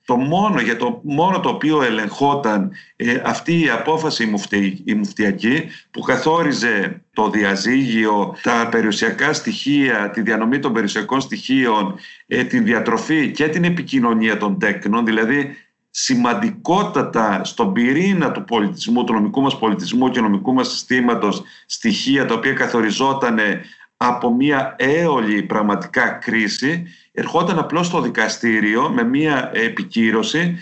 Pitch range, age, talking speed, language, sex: 115-170 Hz, 50-69, 125 wpm, Greek, male